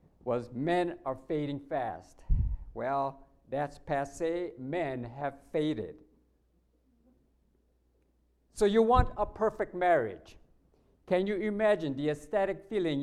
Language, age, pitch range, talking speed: English, 60-79, 115-180 Hz, 105 wpm